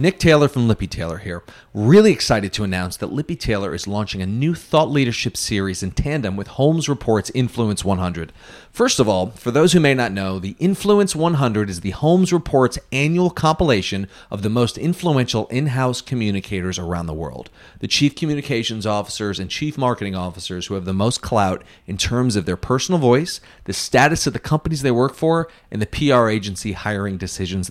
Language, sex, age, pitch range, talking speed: English, male, 40-59, 100-145 Hz, 190 wpm